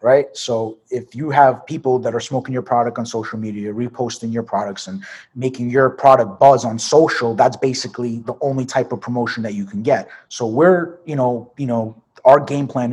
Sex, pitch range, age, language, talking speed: male, 115-130 Hz, 30-49, English, 205 wpm